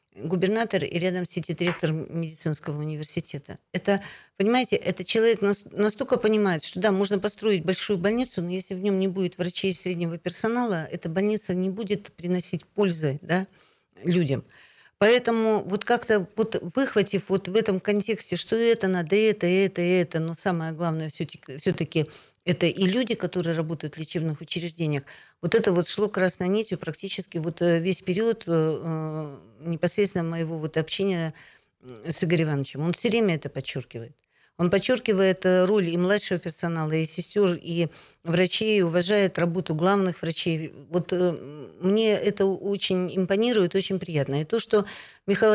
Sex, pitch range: female, 165-200 Hz